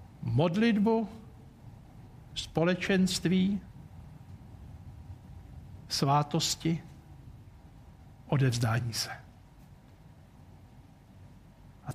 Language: Slovak